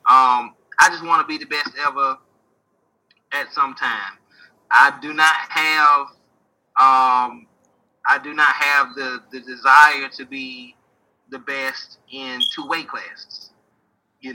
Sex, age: male, 20-39